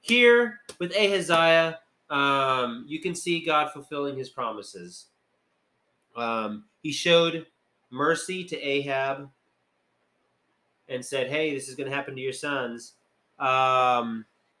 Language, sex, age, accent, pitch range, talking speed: English, male, 30-49, American, 130-180 Hz, 120 wpm